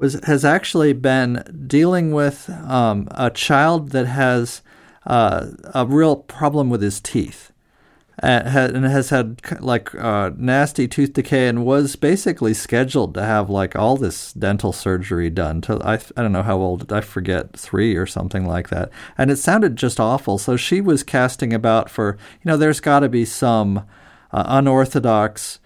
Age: 40-59